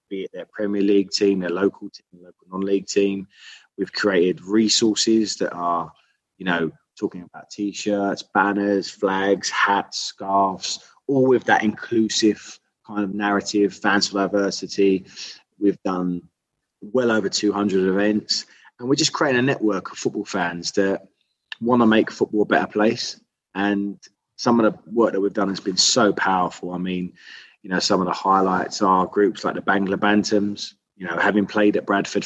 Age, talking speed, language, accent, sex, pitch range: 20-39, 170 wpm, English, British, male, 95-110 Hz